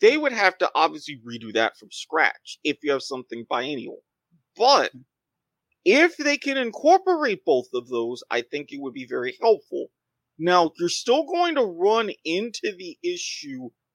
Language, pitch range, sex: English, 145-215 Hz, male